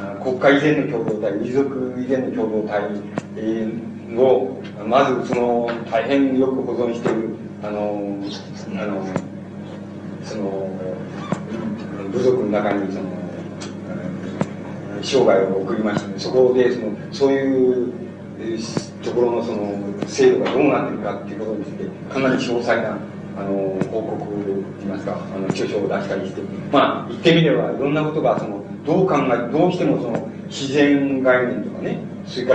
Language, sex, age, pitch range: Japanese, male, 40-59, 100-130 Hz